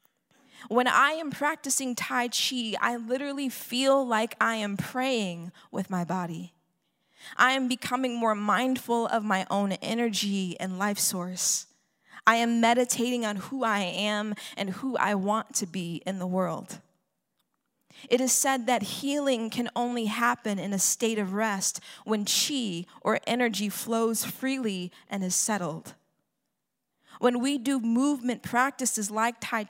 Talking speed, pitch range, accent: 150 wpm, 195-250 Hz, American